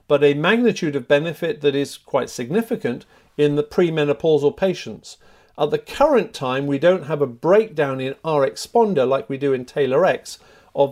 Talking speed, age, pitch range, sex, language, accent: 175 wpm, 50-69, 135-185 Hz, male, English, British